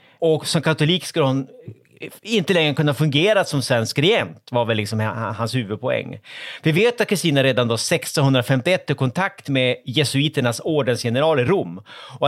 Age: 30-49